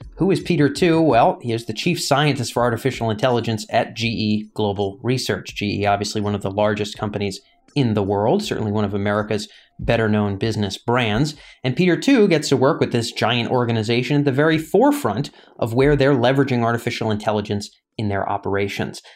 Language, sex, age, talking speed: English, male, 30-49, 180 wpm